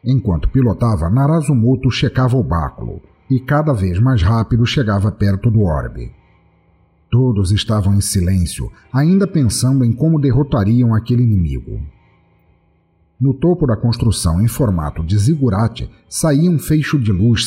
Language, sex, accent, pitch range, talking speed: Portuguese, male, Brazilian, 100-135 Hz, 135 wpm